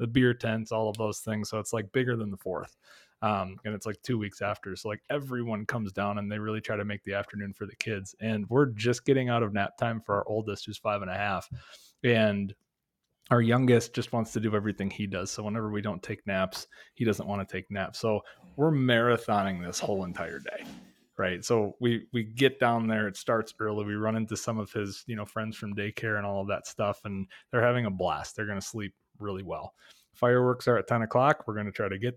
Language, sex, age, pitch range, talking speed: English, male, 20-39, 105-120 Hz, 245 wpm